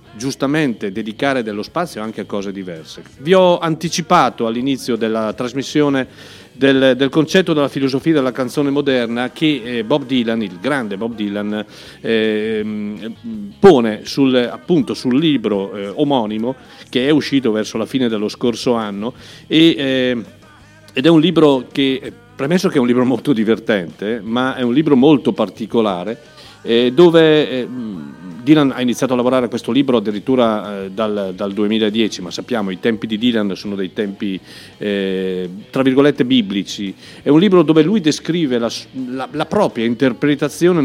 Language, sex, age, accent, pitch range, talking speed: Italian, male, 50-69, native, 110-145 Hz, 155 wpm